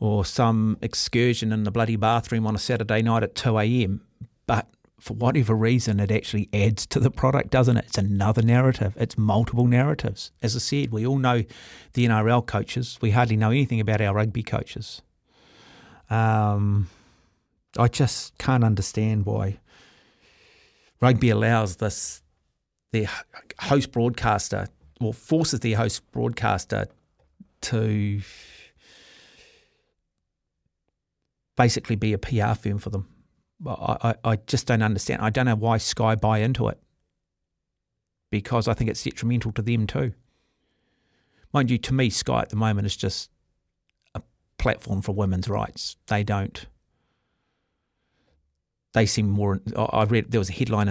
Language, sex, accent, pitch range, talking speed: English, male, Australian, 105-120 Hz, 140 wpm